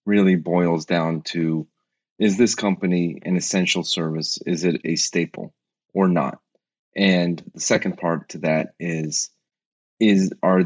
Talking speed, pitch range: 140 wpm, 80-95 Hz